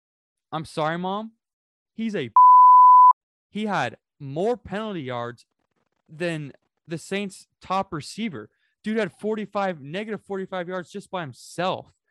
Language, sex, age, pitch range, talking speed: English, male, 20-39, 125-180 Hz, 120 wpm